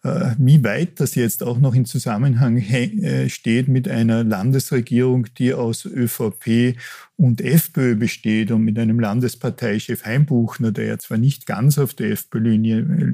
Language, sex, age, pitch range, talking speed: German, male, 50-69, 110-130 Hz, 140 wpm